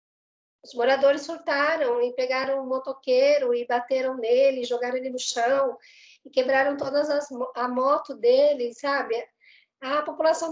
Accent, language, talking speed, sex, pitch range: Brazilian, Portuguese, 145 wpm, female, 255-310 Hz